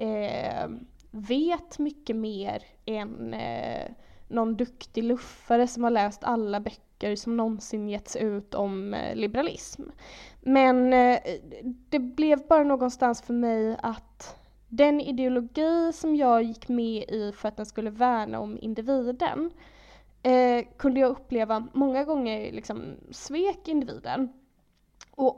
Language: Swedish